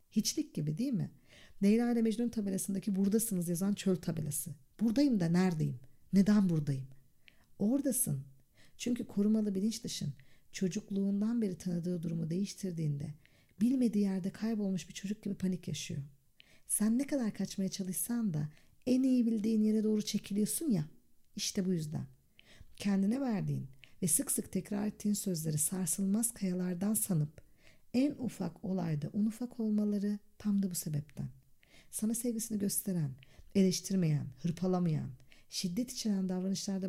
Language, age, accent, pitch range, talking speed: Turkish, 50-69, native, 165-215 Hz, 125 wpm